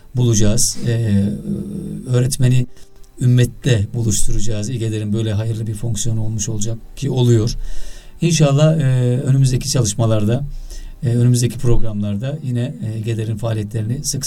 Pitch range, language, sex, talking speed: 115-135 Hz, Turkish, male, 105 wpm